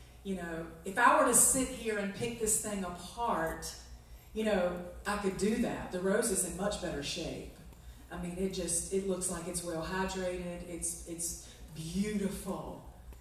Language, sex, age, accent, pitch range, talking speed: English, female, 40-59, American, 185-255 Hz, 175 wpm